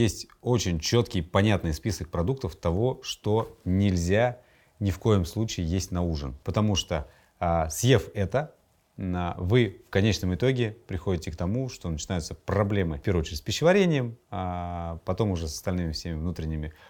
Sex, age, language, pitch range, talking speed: male, 30-49, English, 85-115 Hz, 155 wpm